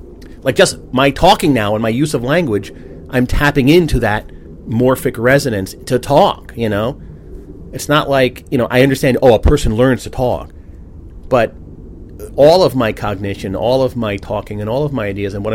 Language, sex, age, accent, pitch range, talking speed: English, male, 40-59, American, 90-130 Hz, 190 wpm